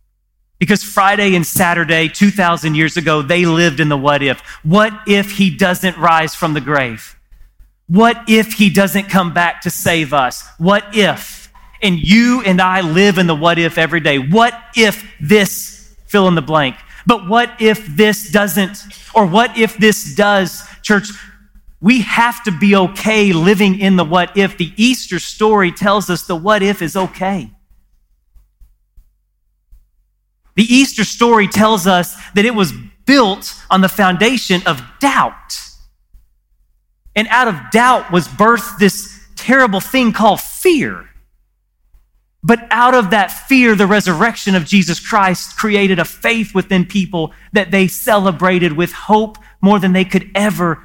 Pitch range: 150-205 Hz